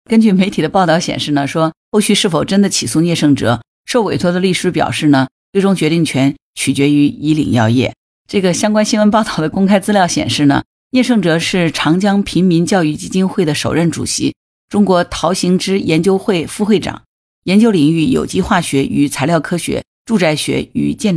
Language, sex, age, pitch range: Chinese, female, 50-69, 155-200 Hz